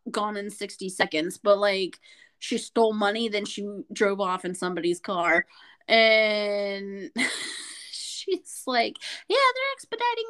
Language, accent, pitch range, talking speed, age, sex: English, American, 210-300 Hz, 130 wpm, 20-39, female